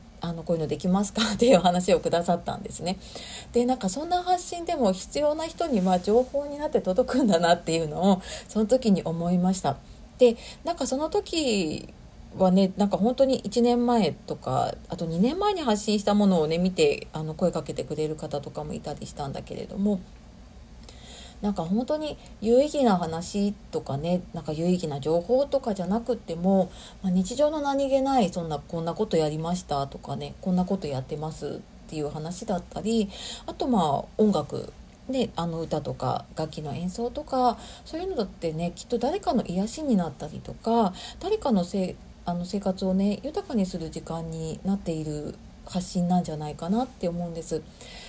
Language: Japanese